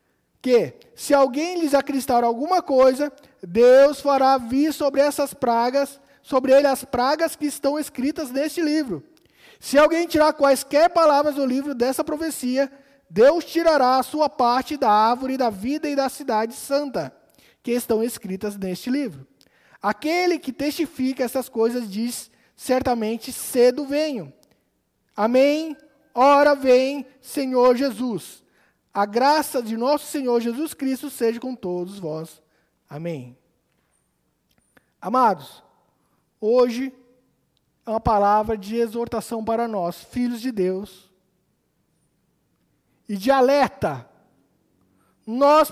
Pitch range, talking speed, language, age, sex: 235-290 Hz, 120 wpm, Portuguese, 20-39, male